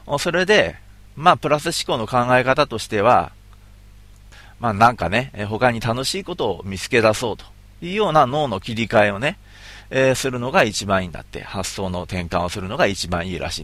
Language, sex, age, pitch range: Japanese, male, 40-59, 95-125 Hz